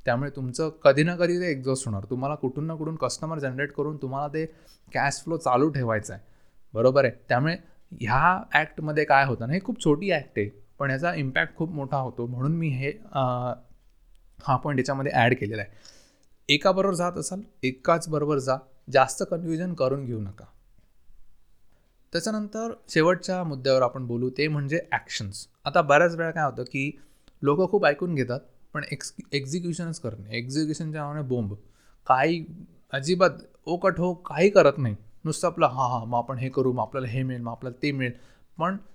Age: 20-39